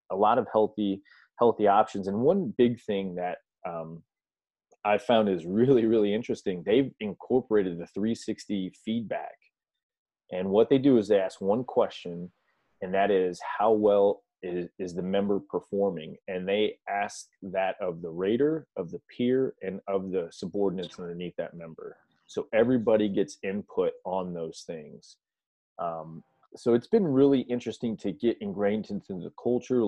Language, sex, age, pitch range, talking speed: English, male, 20-39, 95-115 Hz, 155 wpm